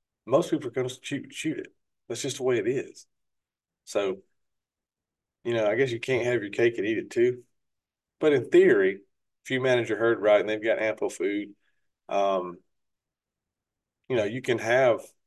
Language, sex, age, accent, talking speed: English, male, 40-59, American, 190 wpm